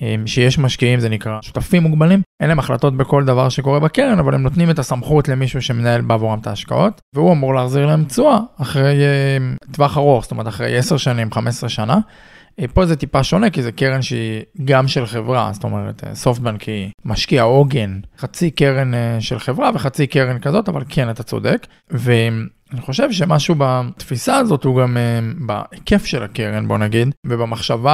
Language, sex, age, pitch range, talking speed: Hebrew, male, 20-39, 120-145 Hz, 175 wpm